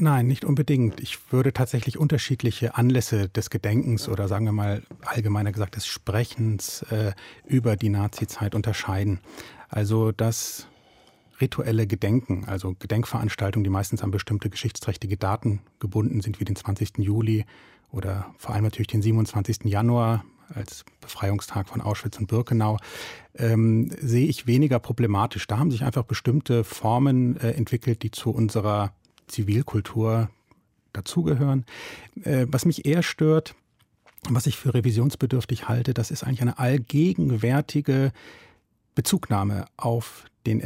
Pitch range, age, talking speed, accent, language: 110-130 Hz, 30-49, 135 wpm, German, German